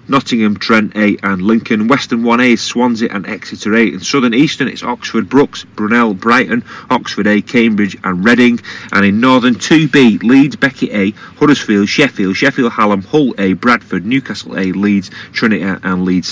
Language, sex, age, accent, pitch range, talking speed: English, male, 30-49, British, 100-135 Hz, 160 wpm